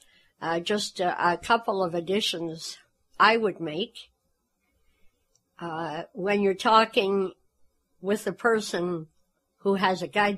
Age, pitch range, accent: 60-79, 165-200 Hz, American